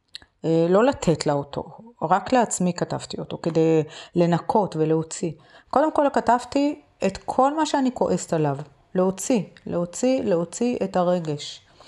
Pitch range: 165-225 Hz